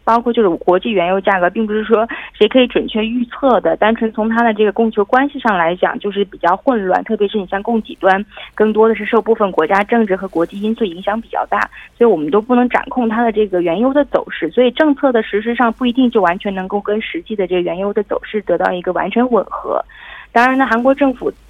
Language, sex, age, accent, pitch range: Korean, female, 20-39, Chinese, 190-235 Hz